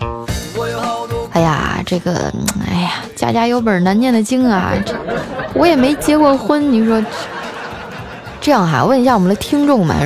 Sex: female